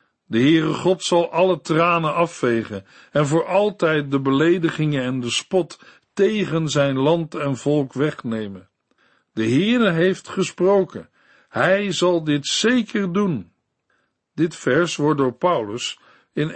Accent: Dutch